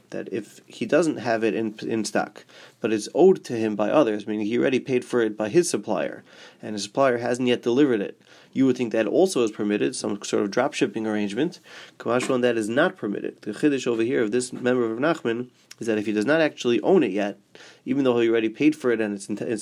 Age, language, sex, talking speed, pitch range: 30-49, English, male, 240 wpm, 110-125 Hz